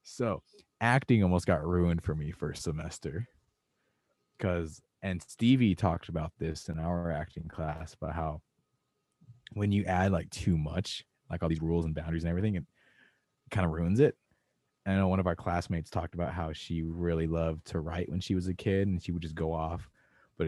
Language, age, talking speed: English, 20-39, 195 wpm